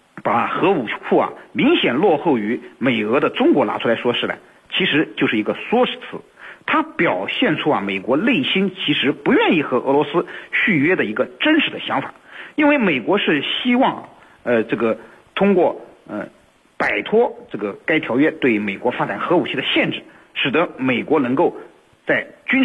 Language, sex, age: Chinese, male, 50-69